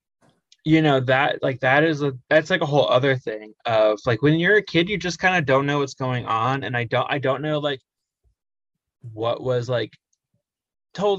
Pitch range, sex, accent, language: 125-155 Hz, male, American, English